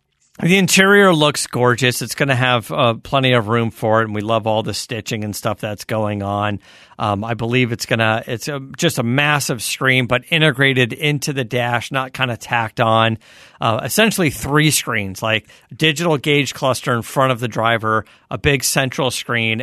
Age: 40-59